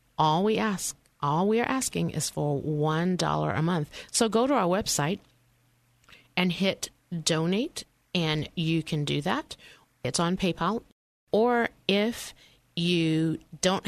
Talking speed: 140 wpm